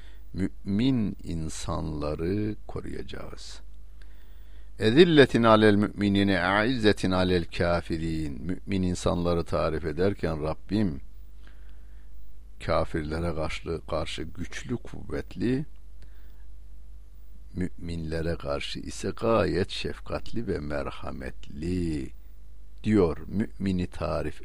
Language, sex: Turkish, male